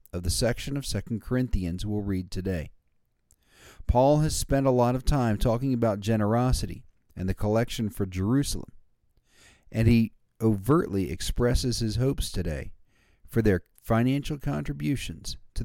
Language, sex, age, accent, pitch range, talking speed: English, male, 50-69, American, 95-130 Hz, 140 wpm